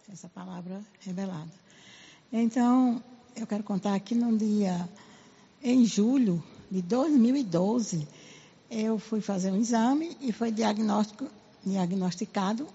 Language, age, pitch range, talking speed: Portuguese, 60-79, 200-265 Hz, 110 wpm